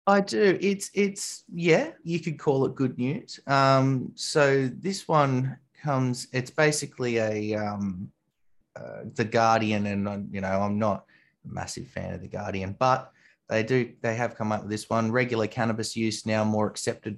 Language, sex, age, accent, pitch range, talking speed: English, male, 20-39, Australian, 100-115 Hz, 175 wpm